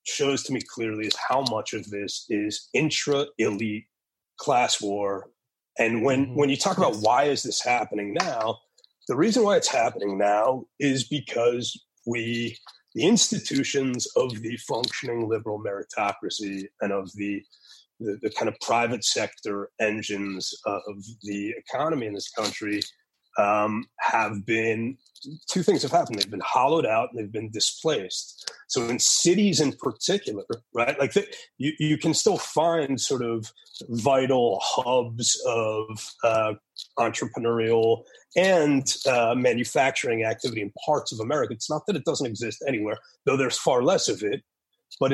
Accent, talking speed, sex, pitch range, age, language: American, 150 wpm, male, 110-145 Hz, 30-49, English